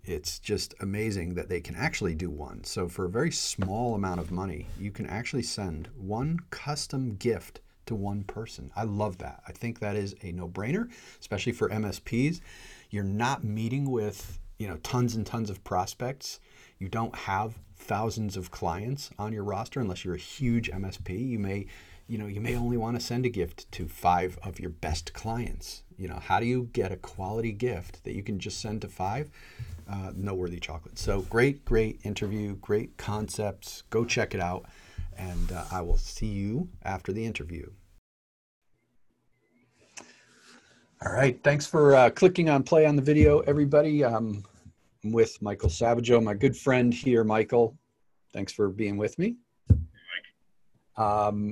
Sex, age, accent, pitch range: male, 40-59, American, 95-120 Hz